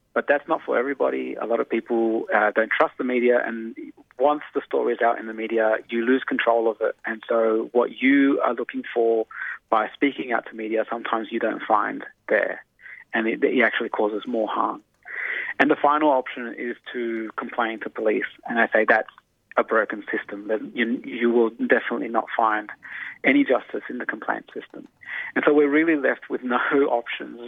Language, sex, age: English, male, 30-49